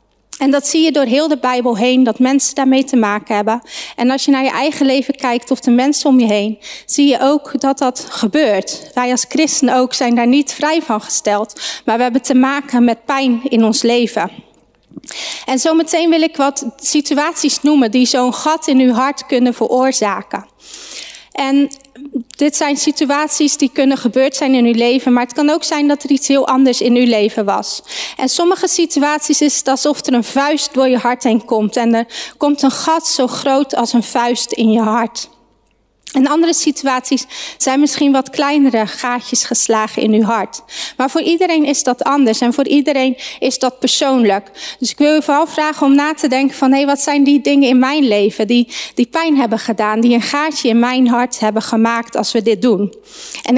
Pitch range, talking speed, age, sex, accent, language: 240-290 Hz, 205 wpm, 30-49, female, Dutch, Dutch